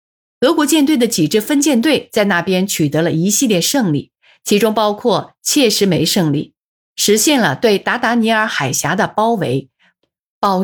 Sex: female